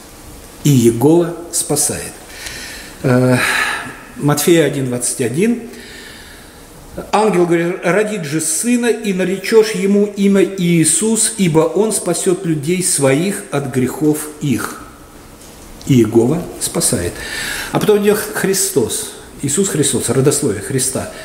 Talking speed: 95 wpm